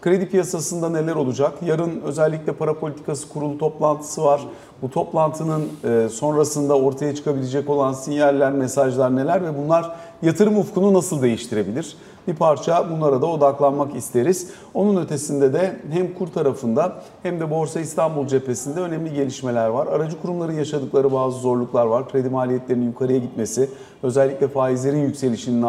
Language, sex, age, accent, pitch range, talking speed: Turkish, male, 50-69, native, 130-165 Hz, 140 wpm